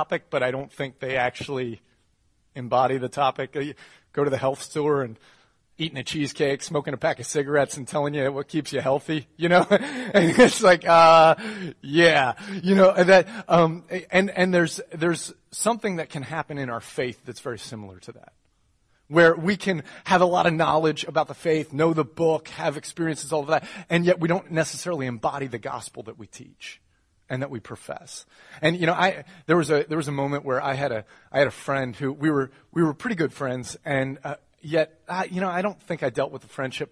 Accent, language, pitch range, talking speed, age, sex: American, English, 125-165 Hz, 215 wpm, 30-49, male